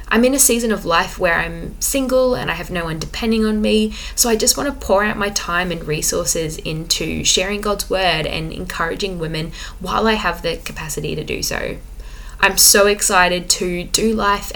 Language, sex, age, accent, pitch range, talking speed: English, female, 10-29, Australian, 170-220 Hz, 200 wpm